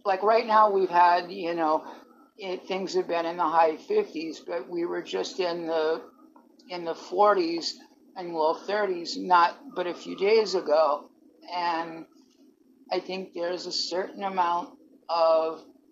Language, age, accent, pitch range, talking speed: English, 50-69, American, 170-255 Hz, 155 wpm